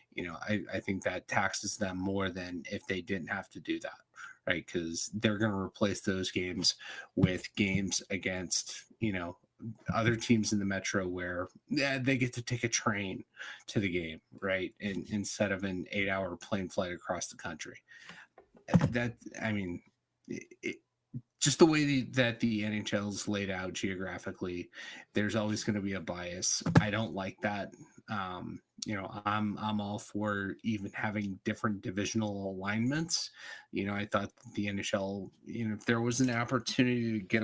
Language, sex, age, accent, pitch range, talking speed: English, male, 30-49, American, 95-110 Hz, 170 wpm